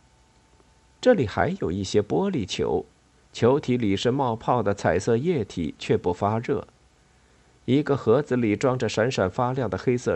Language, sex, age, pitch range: Chinese, male, 50-69, 100-130 Hz